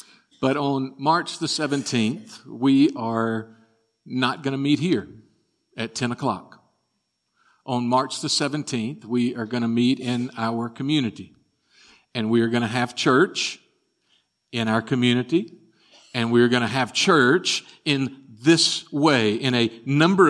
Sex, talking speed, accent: male, 150 wpm, American